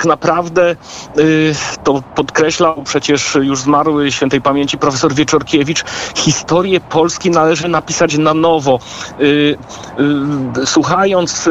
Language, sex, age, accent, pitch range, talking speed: Polish, male, 40-59, native, 145-165 Hz, 95 wpm